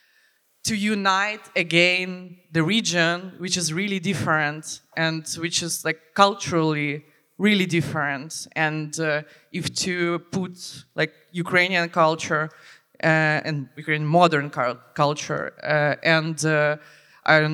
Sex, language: female, French